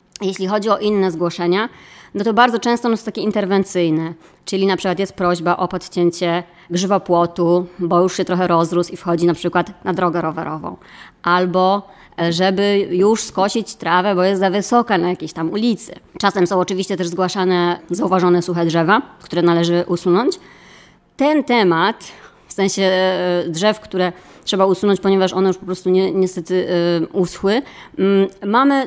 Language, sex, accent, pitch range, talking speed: Polish, male, native, 175-195 Hz, 150 wpm